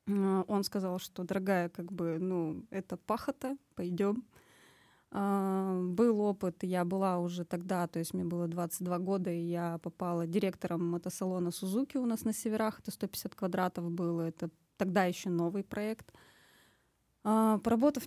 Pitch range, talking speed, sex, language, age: 185-215 Hz, 145 wpm, female, Russian, 20-39